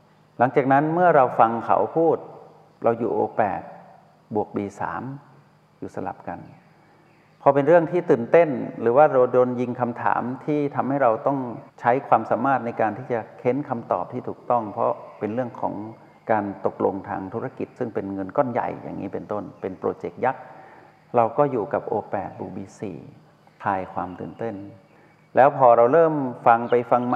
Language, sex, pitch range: Thai, male, 110-140 Hz